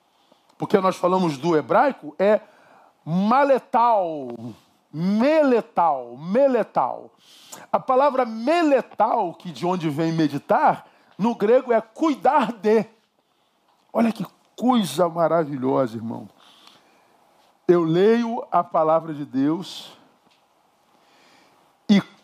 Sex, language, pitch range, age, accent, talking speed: male, Portuguese, 190-275 Hz, 50-69, Brazilian, 90 wpm